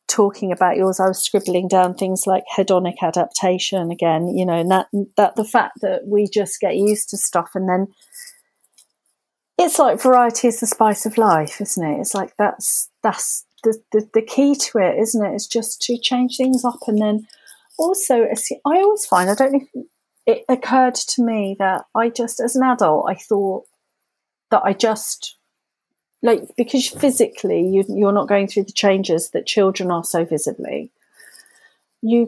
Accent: British